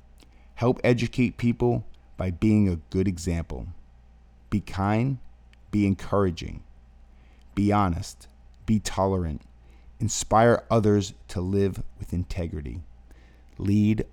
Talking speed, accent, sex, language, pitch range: 100 wpm, American, male, English, 80-105 Hz